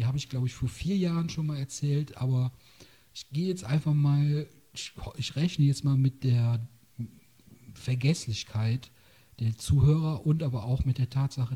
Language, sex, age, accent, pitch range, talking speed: German, male, 40-59, German, 115-135 Hz, 165 wpm